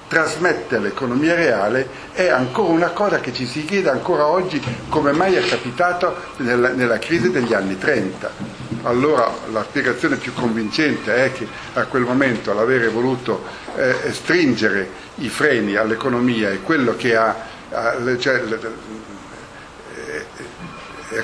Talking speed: 125 wpm